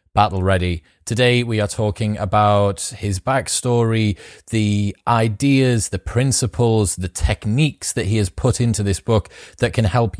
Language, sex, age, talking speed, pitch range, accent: English, male, 30-49, 145 wpm, 95-115 Hz, British